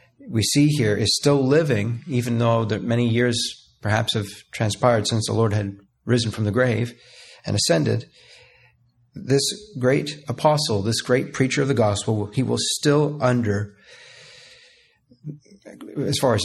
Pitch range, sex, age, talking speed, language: 105-130 Hz, male, 40-59, 145 wpm, English